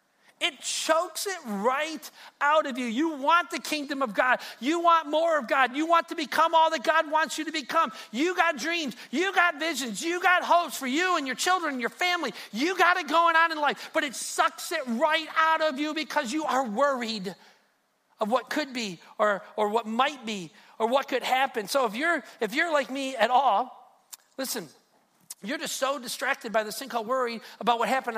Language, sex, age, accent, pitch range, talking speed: English, male, 40-59, American, 245-325 Hz, 210 wpm